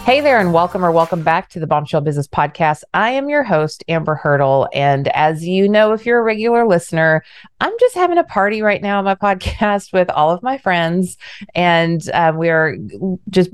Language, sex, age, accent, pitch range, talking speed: English, female, 30-49, American, 155-205 Hz, 205 wpm